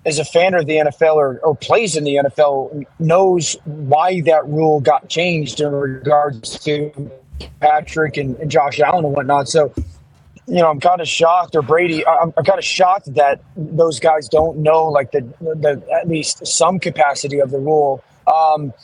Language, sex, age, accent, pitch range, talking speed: English, male, 30-49, American, 145-170 Hz, 185 wpm